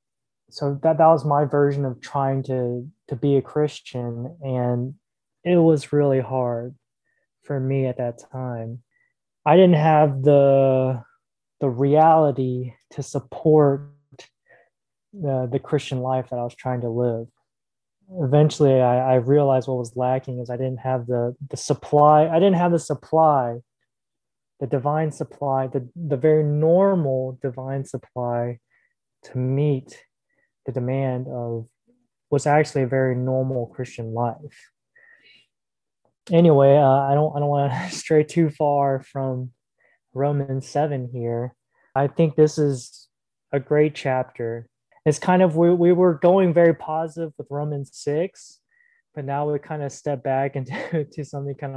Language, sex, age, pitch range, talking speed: English, male, 20-39, 130-150 Hz, 145 wpm